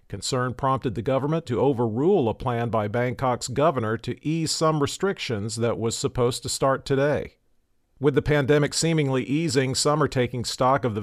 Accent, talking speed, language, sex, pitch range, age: American, 175 wpm, English, male, 120-145 Hz, 50-69